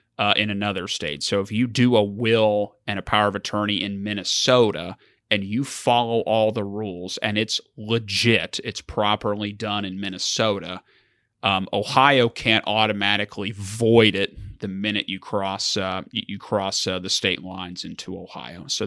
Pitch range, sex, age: 105-115 Hz, male, 30-49